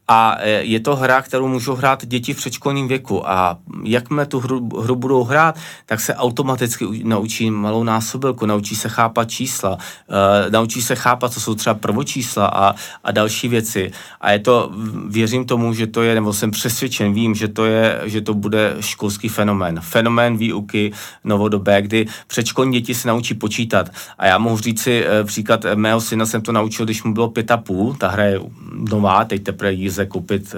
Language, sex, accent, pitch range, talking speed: Czech, male, native, 105-125 Hz, 185 wpm